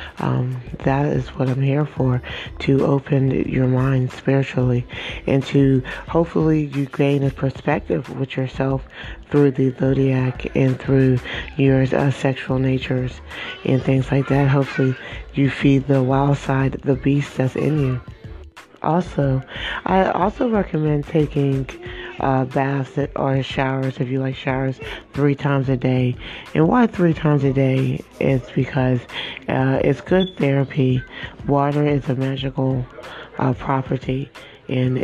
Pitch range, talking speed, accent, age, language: 130-140 Hz, 140 wpm, American, 30-49, English